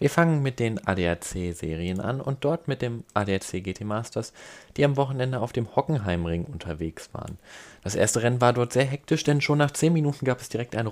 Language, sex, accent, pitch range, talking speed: German, male, German, 95-125 Hz, 205 wpm